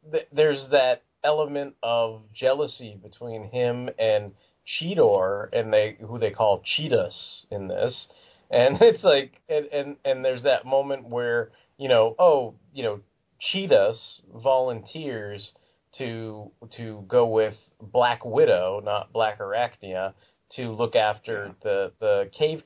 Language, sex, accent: English, male, American